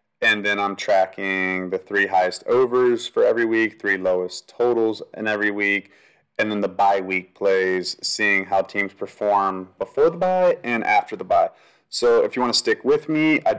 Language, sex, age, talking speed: English, male, 30-49, 190 wpm